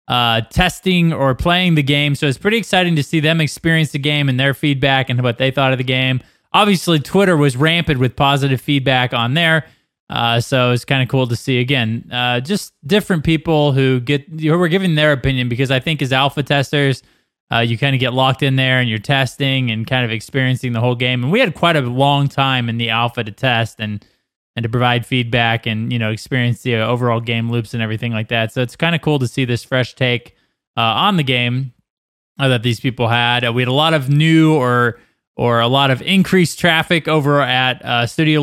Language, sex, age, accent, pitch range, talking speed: English, male, 20-39, American, 120-145 Hz, 230 wpm